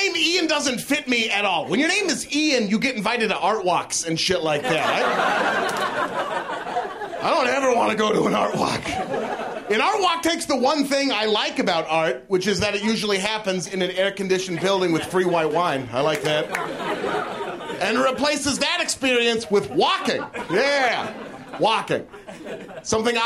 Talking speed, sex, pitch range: 180 wpm, male, 195-295 Hz